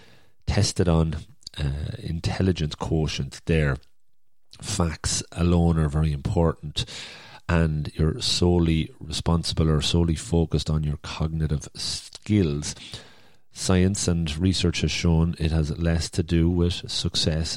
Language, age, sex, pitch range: English, 40-59, male, 80-90 Hz